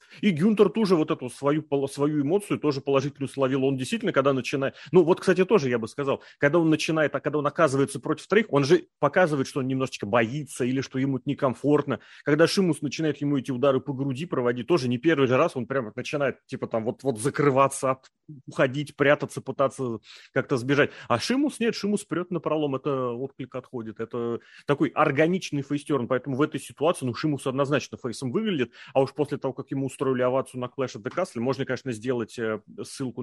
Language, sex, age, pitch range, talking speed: Russian, male, 30-49, 120-145 Hz, 195 wpm